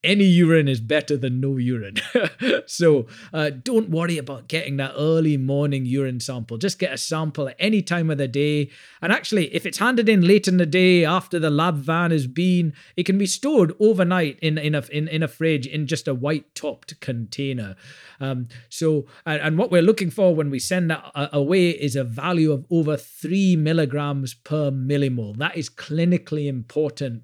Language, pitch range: English, 135-185 Hz